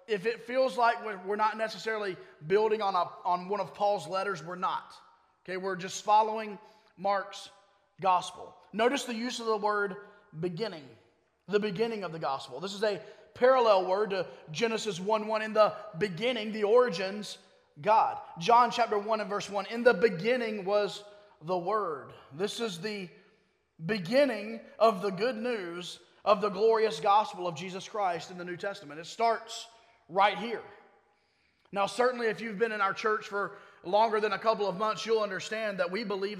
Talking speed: 175 wpm